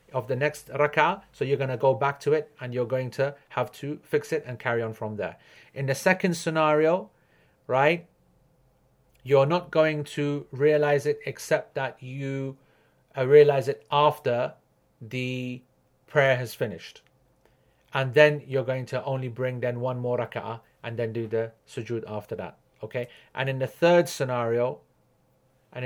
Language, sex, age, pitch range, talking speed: English, male, 40-59, 115-145 Hz, 165 wpm